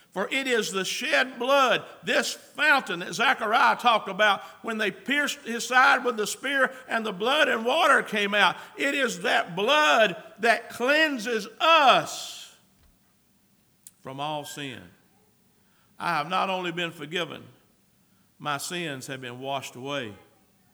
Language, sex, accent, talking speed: English, male, American, 140 wpm